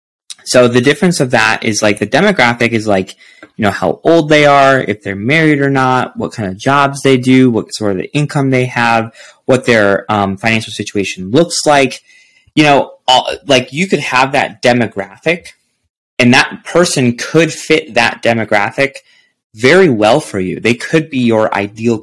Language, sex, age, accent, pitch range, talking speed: English, male, 20-39, American, 100-135 Hz, 185 wpm